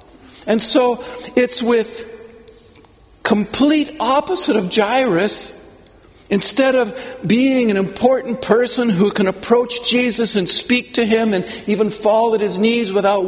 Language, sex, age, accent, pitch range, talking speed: English, male, 50-69, American, 205-255 Hz, 130 wpm